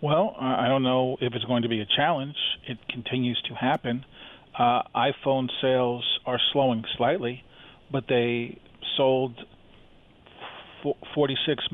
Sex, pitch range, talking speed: male, 125-140 Hz, 135 wpm